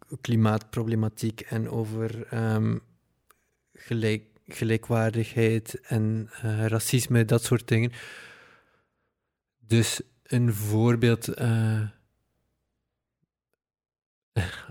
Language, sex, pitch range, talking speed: Dutch, male, 110-120 Hz, 65 wpm